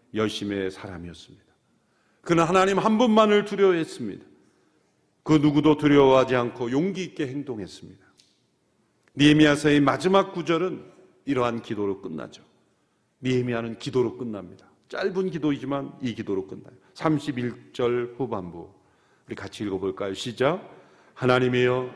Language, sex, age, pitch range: Korean, male, 40-59, 125-190 Hz